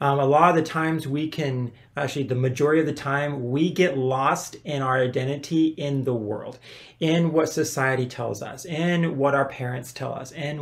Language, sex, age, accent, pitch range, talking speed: English, male, 30-49, American, 130-160 Hz, 200 wpm